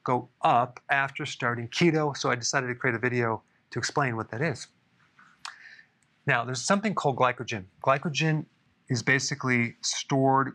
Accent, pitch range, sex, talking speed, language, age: American, 125-150 Hz, male, 150 wpm, English, 30-49